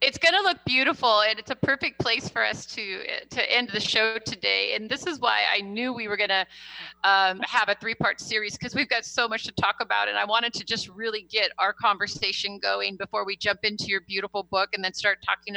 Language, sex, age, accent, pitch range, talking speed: English, female, 30-49, American, 180-215 Hz, 245 wpm